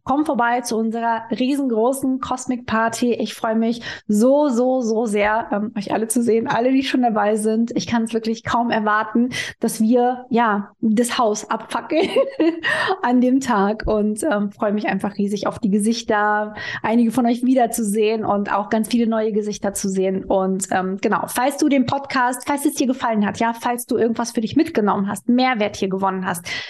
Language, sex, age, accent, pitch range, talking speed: German, female, 20-39, German, 220-255 Hz, 190 wpm